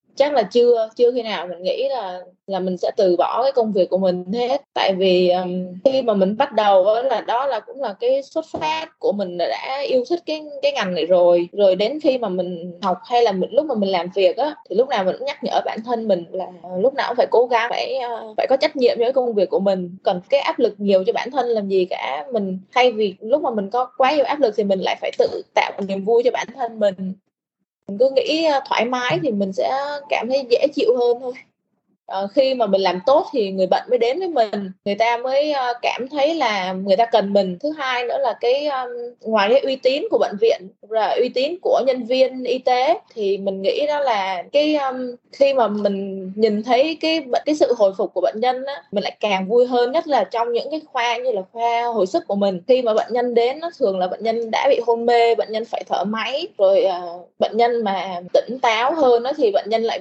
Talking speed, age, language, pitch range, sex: 255 wpm, 20-39, Vietnamese, 195-275 Hz, female